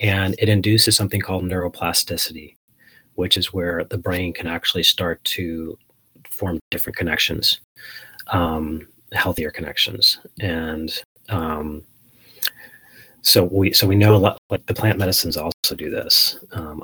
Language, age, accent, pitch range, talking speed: English, 30-49, American, 80-100 Hz, 130 wpm